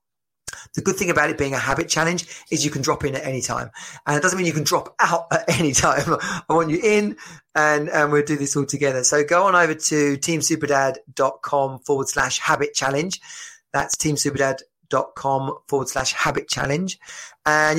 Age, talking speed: 20-39, 190 wpm